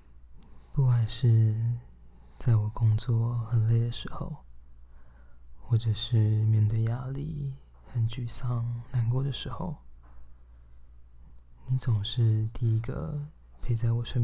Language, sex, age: Chinese, male, 20-39